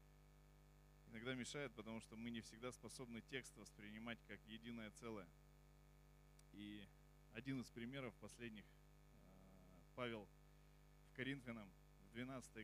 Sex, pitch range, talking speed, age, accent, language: male, 115-155 Hz, 110 wpm, 20-39, native, Russian